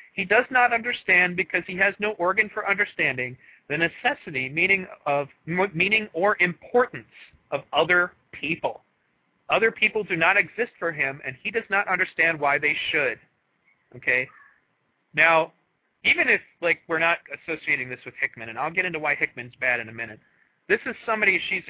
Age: 40-59